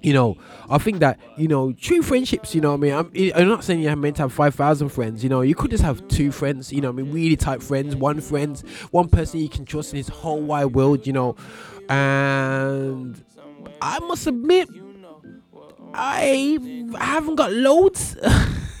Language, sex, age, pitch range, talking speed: English, male, 20-39, 120-160 Hz, 200 wpm